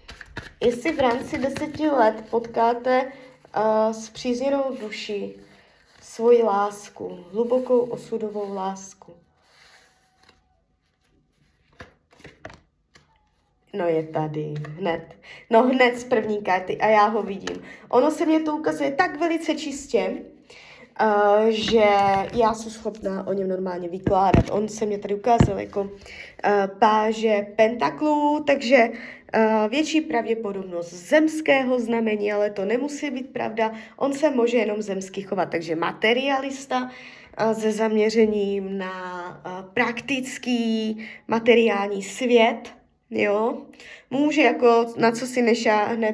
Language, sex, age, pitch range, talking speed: Czech, female, 20-39, 200-245 Hz, 110 wpm